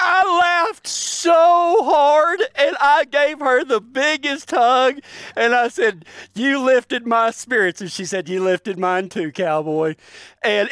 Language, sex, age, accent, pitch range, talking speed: English, male, 40-59, American, 215-320 Hz, 150 wpm